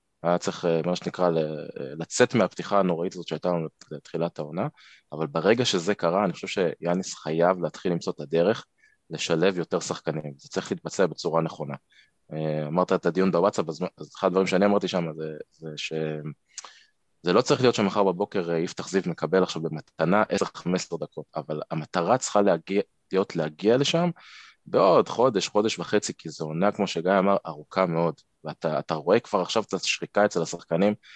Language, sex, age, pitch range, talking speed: Hebrew, male, 20-39, 80-100 Hz, 160 wpm